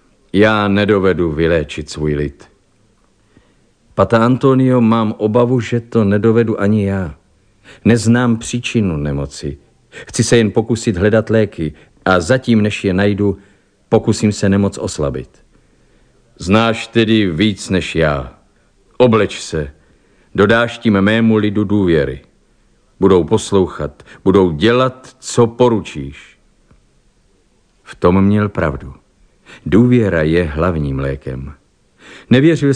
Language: Czech